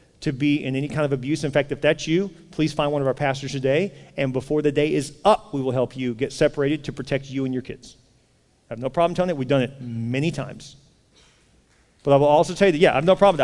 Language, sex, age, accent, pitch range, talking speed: English, male, 40-59, American, 130-155 Hz, 270 wpm